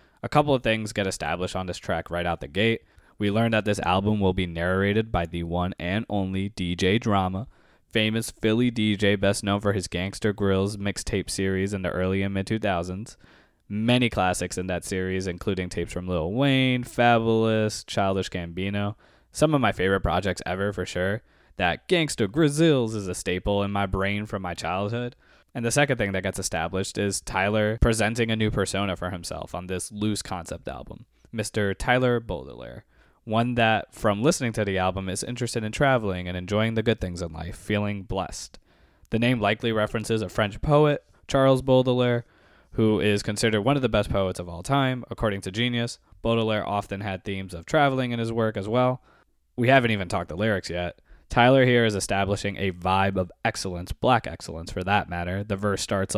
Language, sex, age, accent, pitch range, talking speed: English, male, 20-39, American, 95-115 Hz, 190 wpm